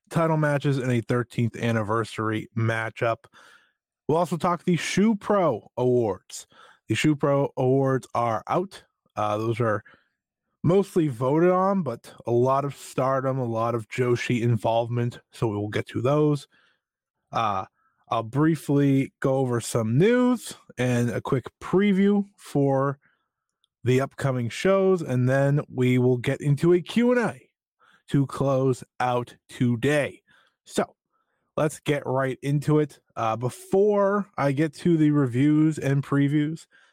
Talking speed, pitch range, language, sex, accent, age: 140 wpm, 125-165 Hz, English, male, American, 20-39